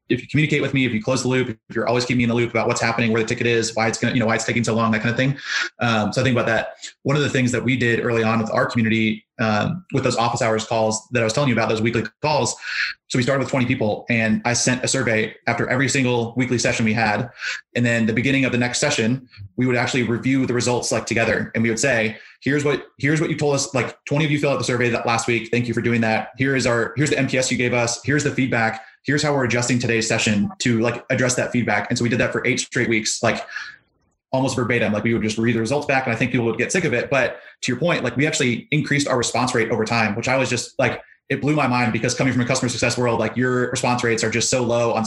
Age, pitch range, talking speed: 20-39, 115-130 Hz, 295 wpm